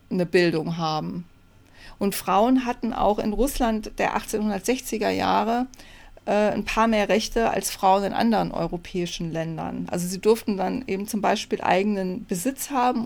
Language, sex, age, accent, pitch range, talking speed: German, female, 40-59, German, 175-225 Hz, 150 wpm